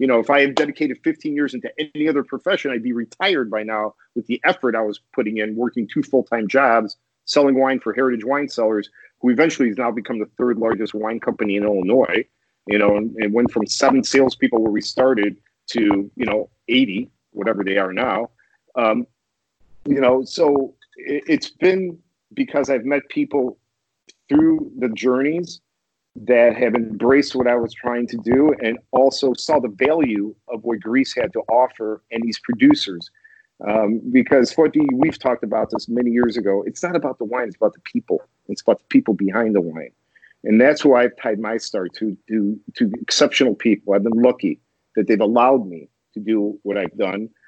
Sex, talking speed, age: male, 190 wpm, 40-59